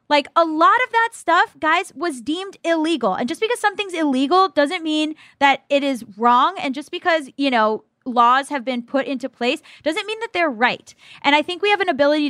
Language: English